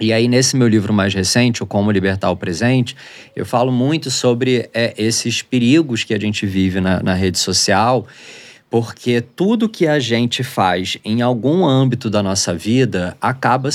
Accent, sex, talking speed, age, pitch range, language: Brazilian, male, 170 wpm, 20-39, 100-125 Hz, Portuguese